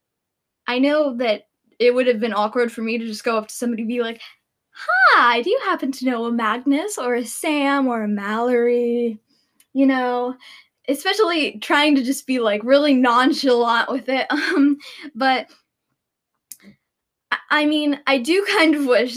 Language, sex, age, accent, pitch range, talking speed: English, female, 10-29, American, 240-295 Hz, 170 wpm